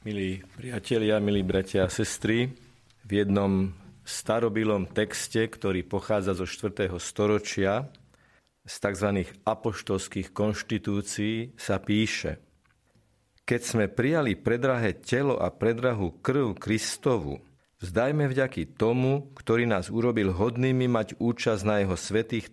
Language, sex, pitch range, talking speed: Slovak, male, 100-125 Hz, 110 wpm